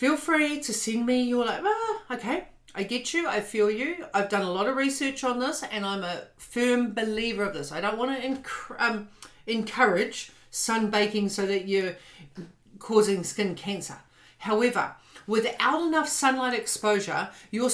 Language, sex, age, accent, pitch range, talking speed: English, female, 40-59, Australian, 190-250 Hz, 170 wpm